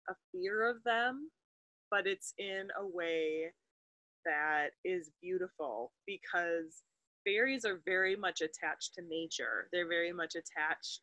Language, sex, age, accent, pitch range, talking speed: English, female, 20-39, American, 165-230 Hz, 130 wpm